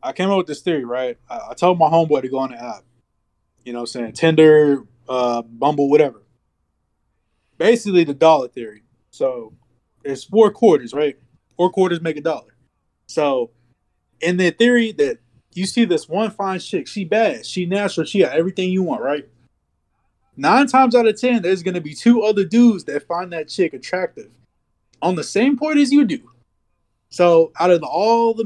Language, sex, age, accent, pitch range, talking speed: English, male, 20-39, American, 135-215 Hz, 190 wpm